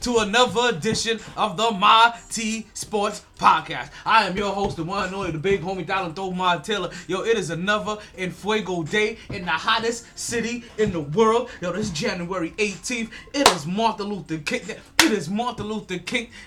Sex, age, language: male, 20-39, English